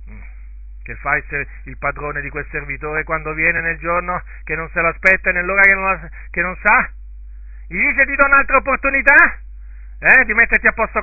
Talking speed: 195 wpm